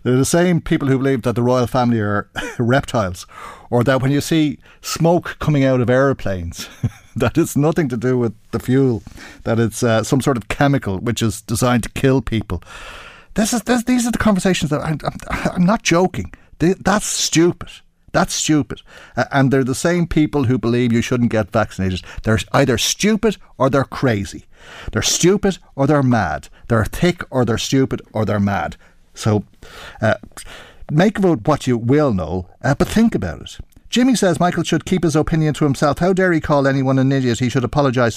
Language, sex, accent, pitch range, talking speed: English, male, Irish, 105-145 Hz, 195 wpm